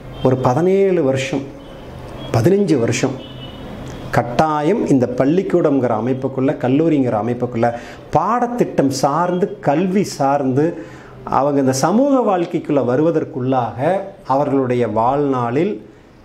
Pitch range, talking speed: 130-175 Hz, 80 wpm